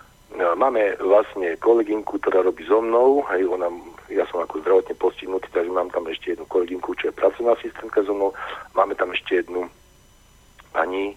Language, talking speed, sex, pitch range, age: Slovak, 170 wpm, male, 345-440 Hz, 40-59